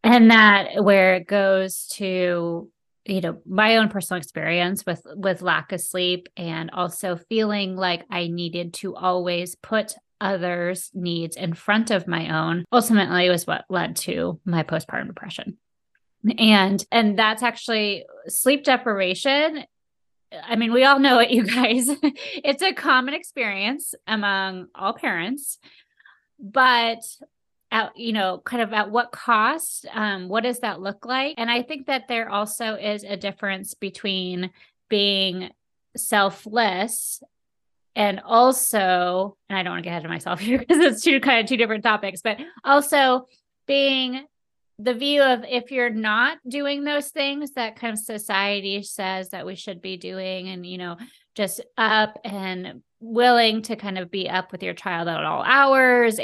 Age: 30-49